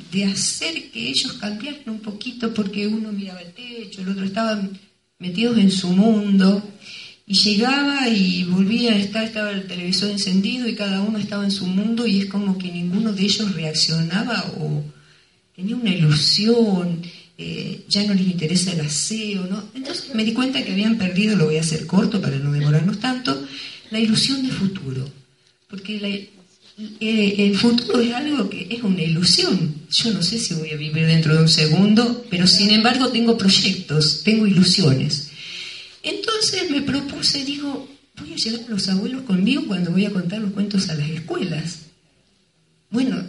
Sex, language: female, Spanish